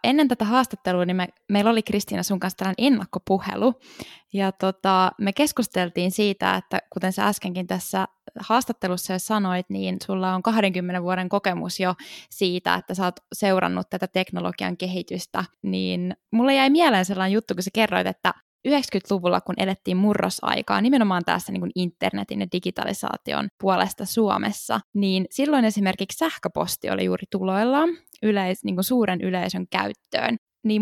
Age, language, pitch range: 10-29, Finnish, 185-225 Hz